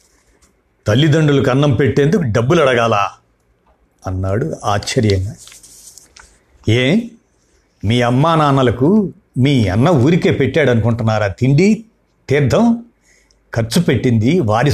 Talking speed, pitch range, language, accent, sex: 85 wpm, 115-175 Hz, Telugu, native, male